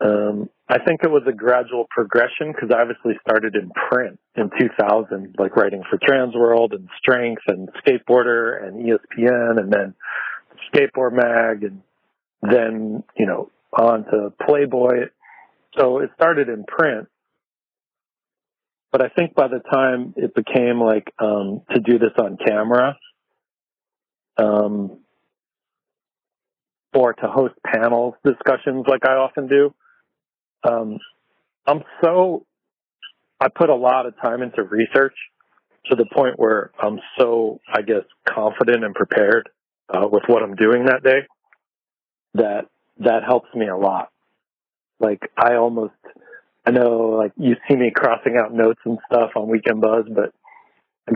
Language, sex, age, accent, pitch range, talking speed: English, male, 40-59, American, 110-130 Hz, 140 wpm